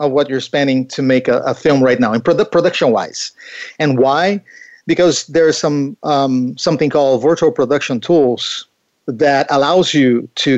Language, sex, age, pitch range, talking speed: English, male, 50-69, 130-165 Hz, 170 wpm